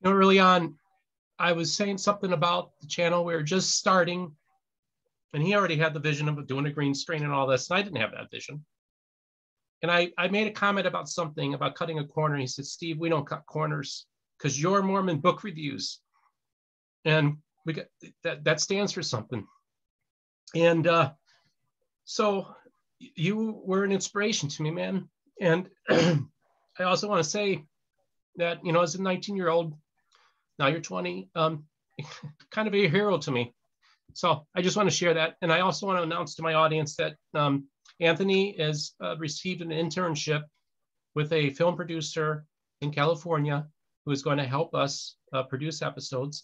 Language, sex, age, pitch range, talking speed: English, male, 40-59, 140-180 Hz, 175 wpm